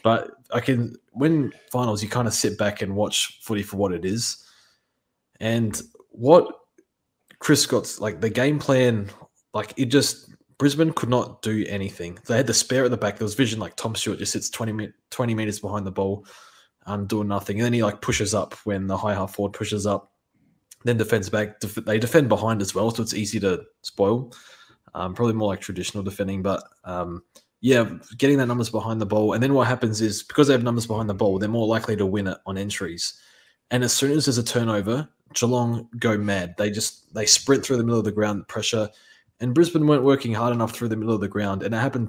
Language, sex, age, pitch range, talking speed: English, male, 20-39, 100-120 Hz, 225 wpm